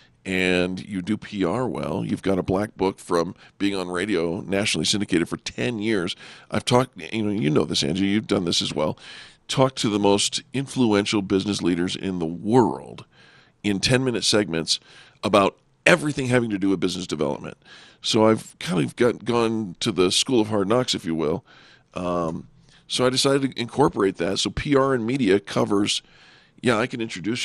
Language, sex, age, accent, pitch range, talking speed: English, male, 50-69, American, 95-125 Hz, 185 wpm